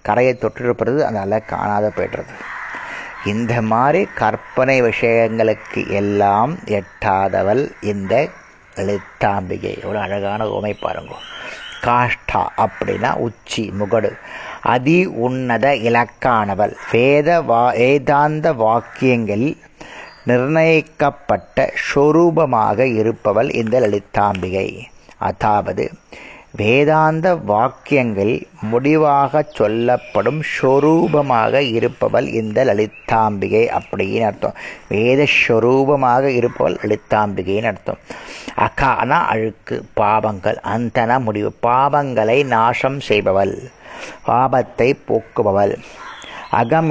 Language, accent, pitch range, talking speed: Tamil, native, 110-140 Hz, 75 wpm